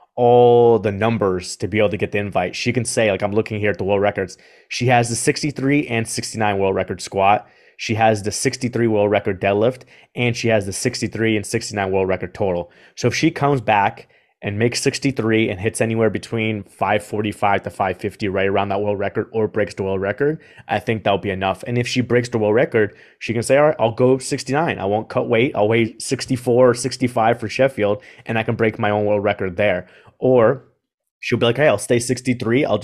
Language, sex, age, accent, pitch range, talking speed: English, male, 20-39, American, 100-115 Hz, 220 wpm